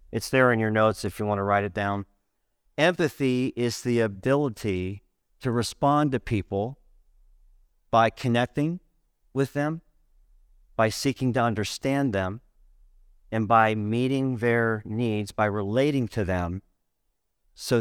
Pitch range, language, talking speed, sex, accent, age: 105-140 Hz, English, 130 wpm, male, American, 40-59